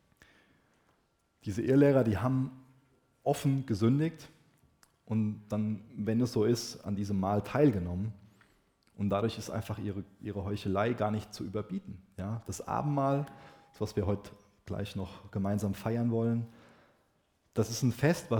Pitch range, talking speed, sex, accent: 100-125 Hz, 130 wpm, male, German